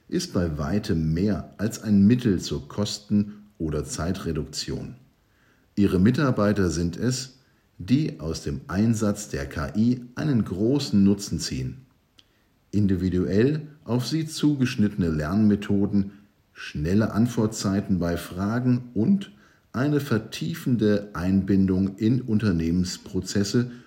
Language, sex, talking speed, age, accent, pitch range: German, male, 100 wpm, 50-69, German, 90-125 Hz